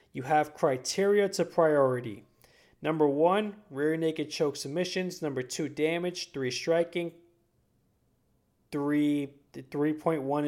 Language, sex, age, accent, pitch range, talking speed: English, male, 20-39, American, 130-160 Hz, 105 wpm